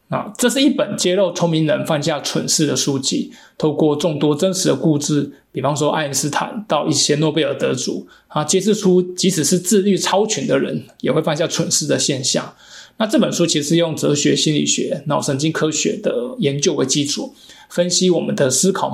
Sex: male